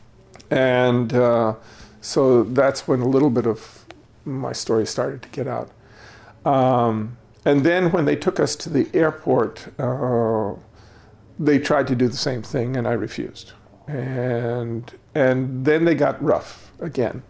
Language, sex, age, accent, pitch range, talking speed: English, male, 50-69, American, 115-145 Hz, 150 wpm